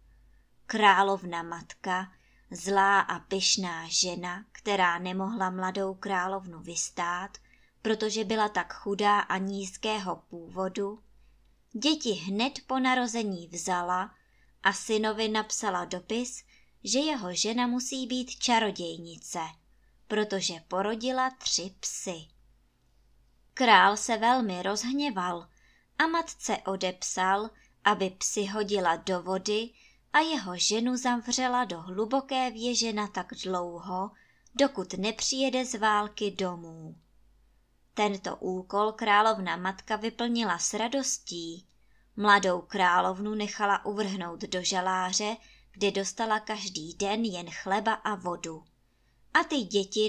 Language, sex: Czech, male